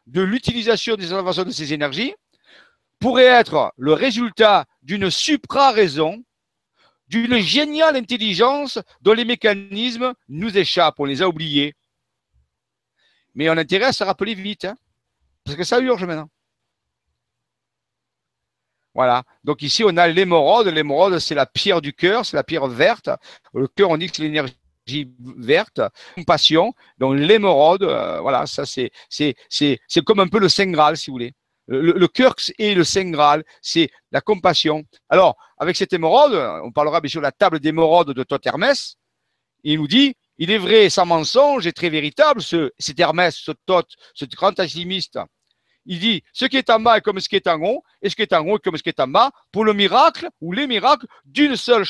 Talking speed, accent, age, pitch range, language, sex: 185 wpm, French, 50-69, 155-230 Hz, French, male